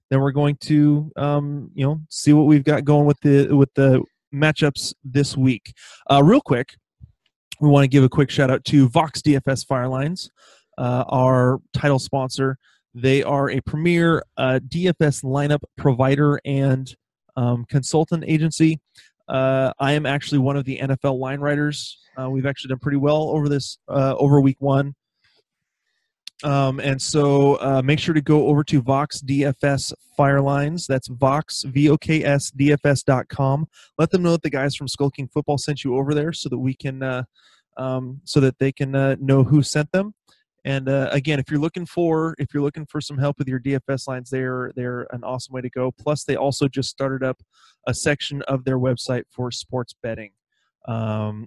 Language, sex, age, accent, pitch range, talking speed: English, male, 20-39, American, 130-145 Hz, 190 wpm